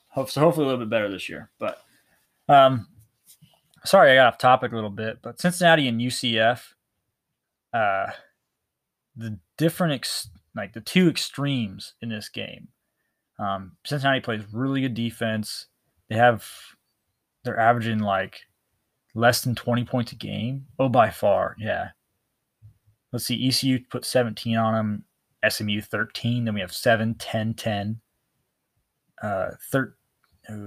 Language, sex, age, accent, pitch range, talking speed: English, male, 20-39, American, 105-130 Hz, 140 wpm